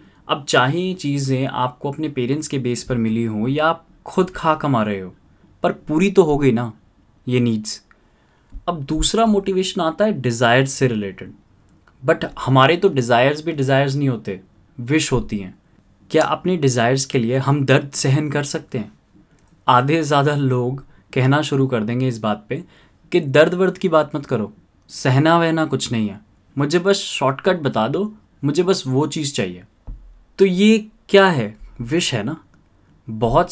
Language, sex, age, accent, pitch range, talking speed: Hindi, male, 20-39, native, 120-160 Hz, 170 wpm